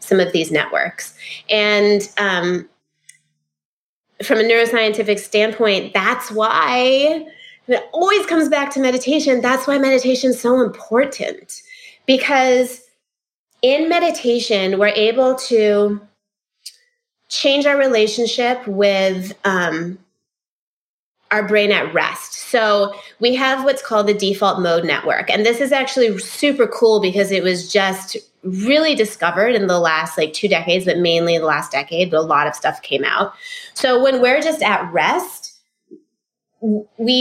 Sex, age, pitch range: female, 20-39, 190-255 Hz